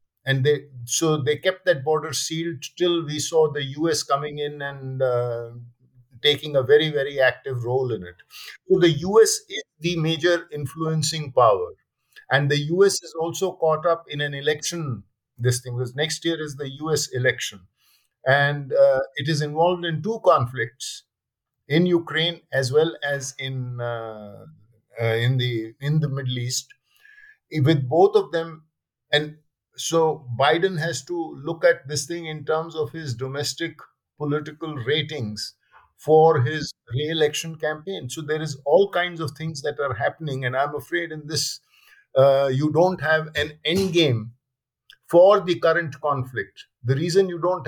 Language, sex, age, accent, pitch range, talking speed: English, male, 50-69, Indian, 135-165 Hz, 160 wpm